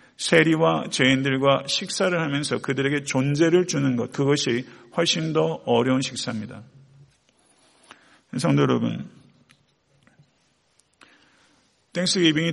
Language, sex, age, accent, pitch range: Korean, male, 40-59, native, 125-160 Hz